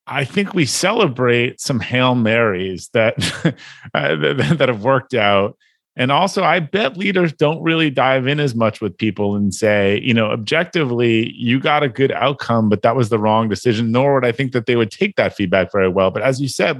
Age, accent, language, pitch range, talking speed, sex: 30-49, American, English, 115-160 Hz, 205 wpm, male